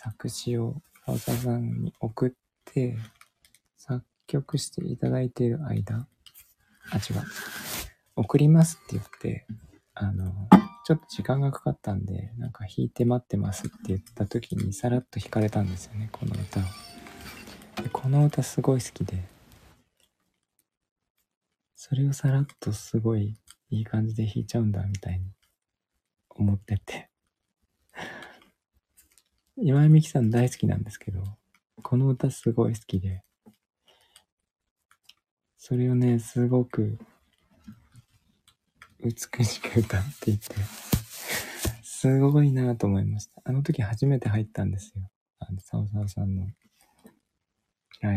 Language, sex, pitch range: Japanese, male, 100-130 Hz